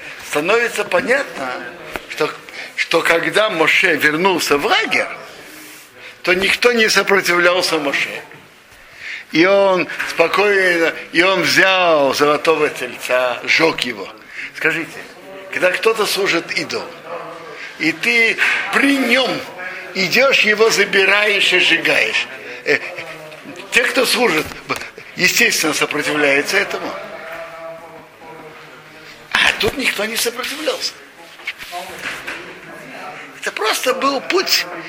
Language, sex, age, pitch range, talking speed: Russian, male, 60-79, 165-250 Hz, 90 wpm